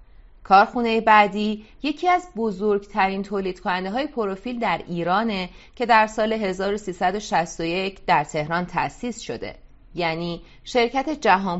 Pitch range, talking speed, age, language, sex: 180-230 Hz, 115 wpm, 30-49, Persian, female